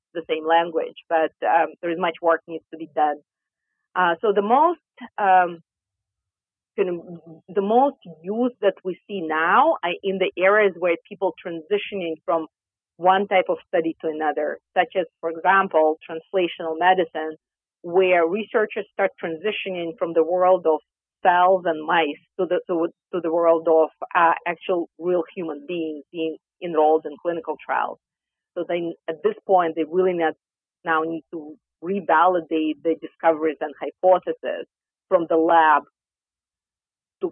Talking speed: 150 wpm